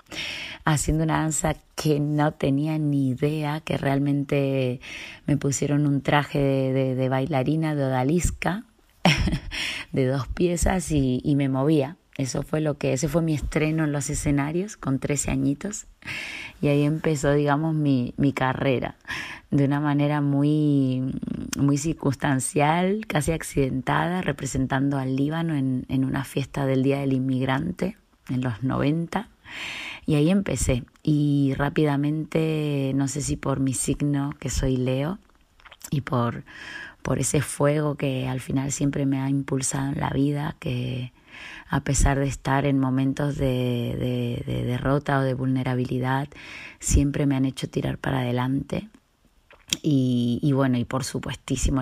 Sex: female